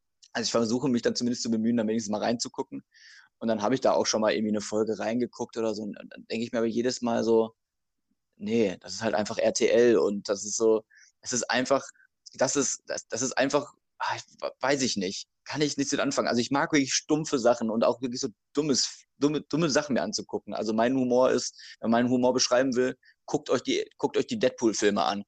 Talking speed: 220 wpm